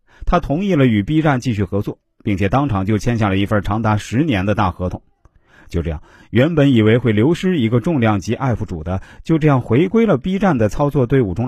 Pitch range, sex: 100-135 Hz, male